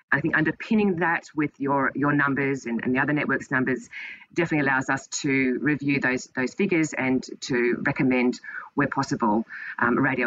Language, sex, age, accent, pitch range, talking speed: English, female, 30-49, Australian, 125-155 Hz, 170 wpm